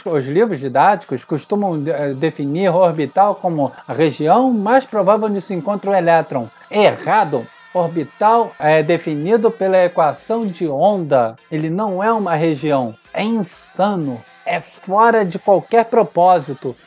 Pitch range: 165-220 Hz